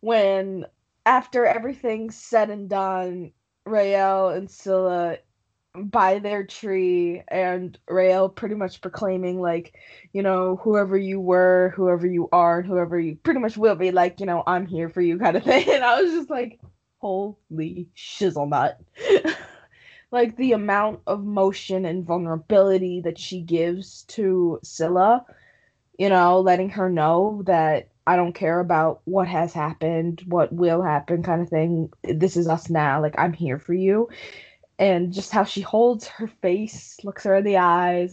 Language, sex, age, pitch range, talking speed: English, female, 20-39, 170-200 Hz, 160 wpm